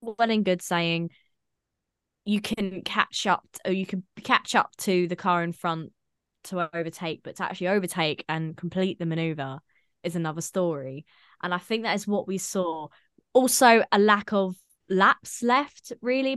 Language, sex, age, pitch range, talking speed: English, female, 20-39, 175-220 Hz, 170 wpm